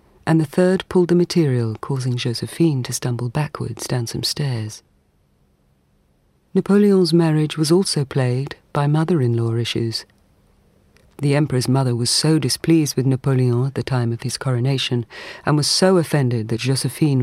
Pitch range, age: 115-155 Hz, 40-59